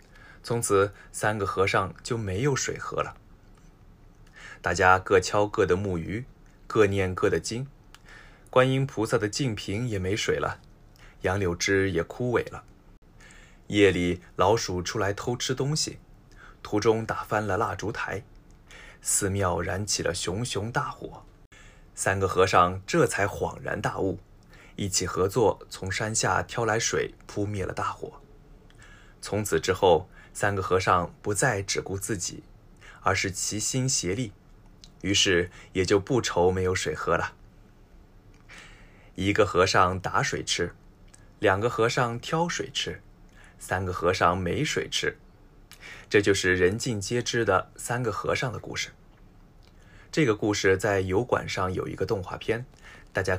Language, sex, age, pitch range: Japanese, male, 20-39, 95-120 Hz